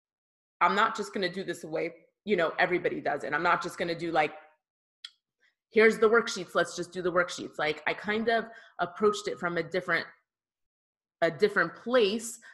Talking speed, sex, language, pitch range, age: 195 wpm, female, English, 165-210 Hz, 20-39